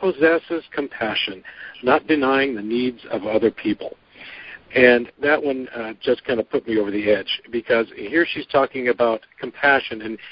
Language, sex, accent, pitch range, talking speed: English, male, American, 115-150 Hz, 165 wpm